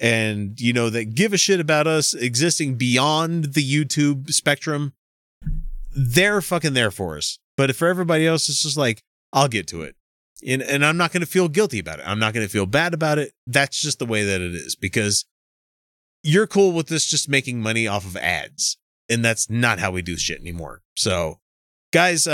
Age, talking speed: 30-49, 205 wpm